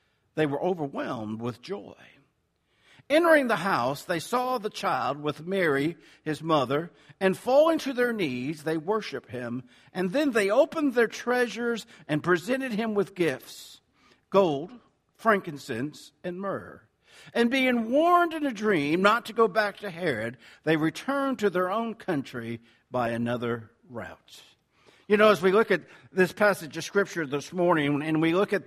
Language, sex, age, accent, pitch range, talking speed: English, male, 60-79, American, 155-205 Hz, 160 wpm